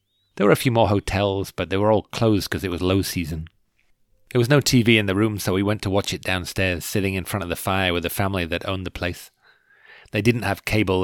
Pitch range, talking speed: 90-105 Hz, 255 wpm